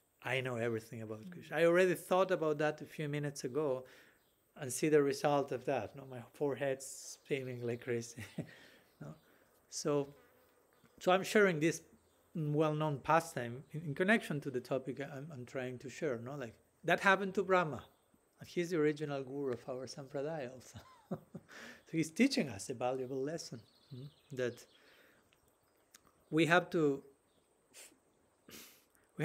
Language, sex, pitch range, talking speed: English, male, 130-160 Hz, 160 wpm